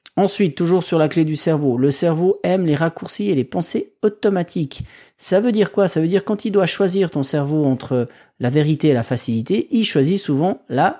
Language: French